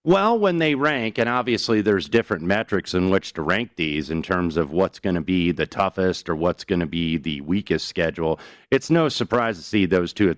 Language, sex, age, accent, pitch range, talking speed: English, male, 40-59, American, 90-115 Hz, 225 wpm